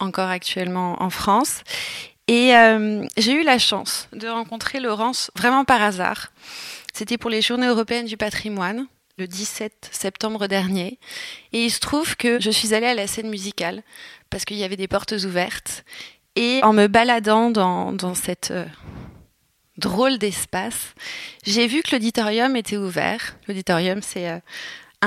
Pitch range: 195-235 Hz